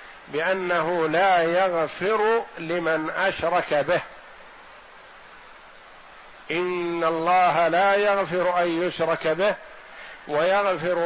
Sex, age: male, 50-69